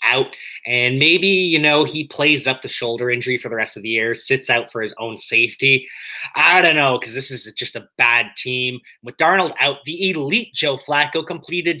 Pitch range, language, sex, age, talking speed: 140-215 Hz, English, male, 20-39, 210 wpm